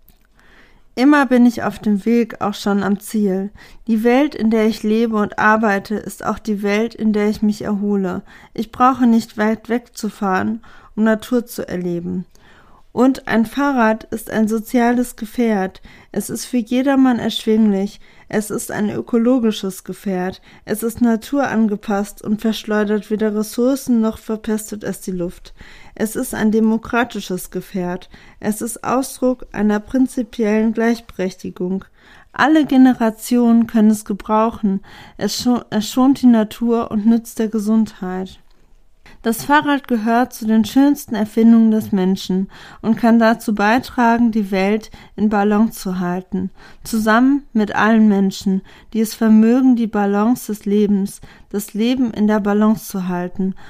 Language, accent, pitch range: German, German, 205-235 Hz